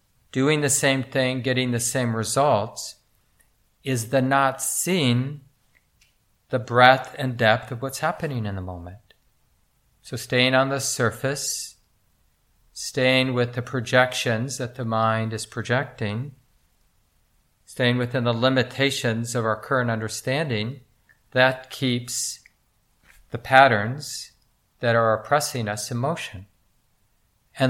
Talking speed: 120 wpm